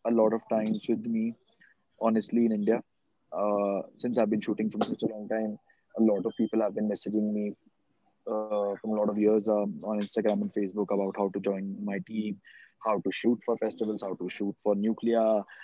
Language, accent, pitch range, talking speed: English, Indian, 105-120 Hz, 205 wpm